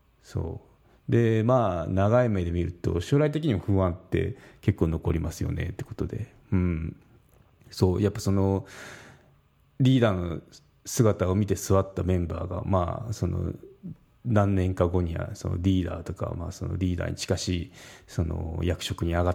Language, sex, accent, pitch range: Japanese, male, native, 90-120 Hz